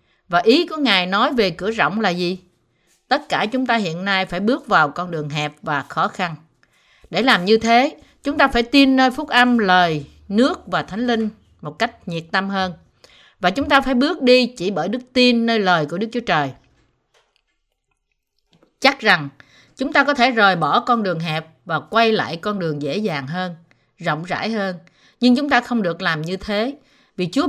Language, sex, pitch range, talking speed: Vietnamese, female, 175-245 Hz, 205 wpm